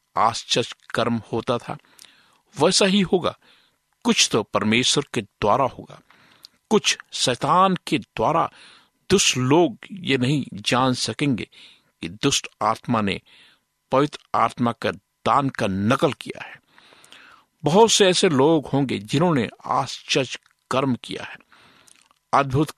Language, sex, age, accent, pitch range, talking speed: Hindi, male, 60-79, native, 115-150 Hz, 120 wpm